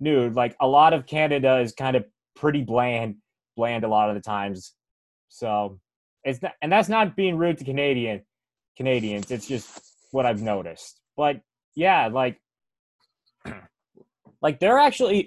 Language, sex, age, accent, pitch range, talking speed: English, male, 20-39, American, 125-165 Hz, 155 wpm